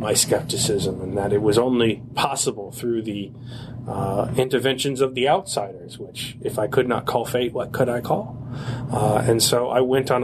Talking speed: 190 wpm